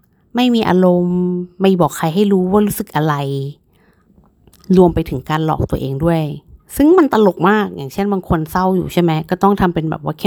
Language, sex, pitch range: Thai, female, 165-200 Hz